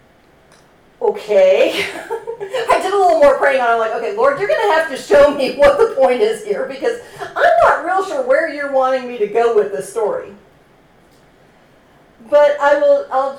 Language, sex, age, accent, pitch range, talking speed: English, female, 40-59, American, 205-310 Hz, 195 wpm